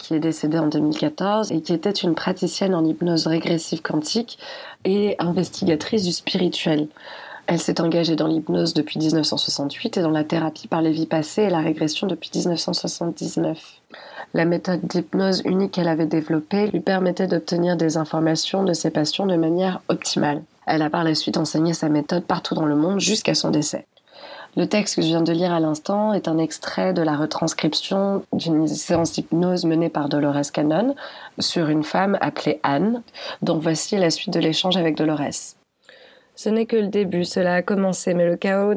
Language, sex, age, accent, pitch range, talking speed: French, female, 30-49, French, 160-195 Hz, 180 wpm